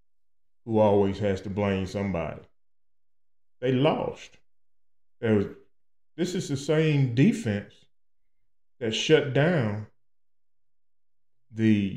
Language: English